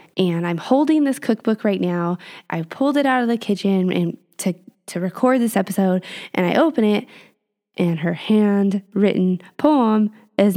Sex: female